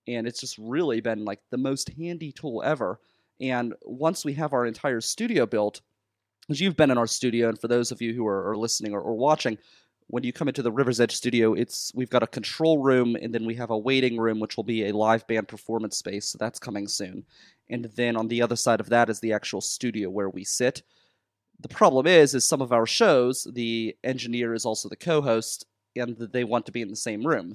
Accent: American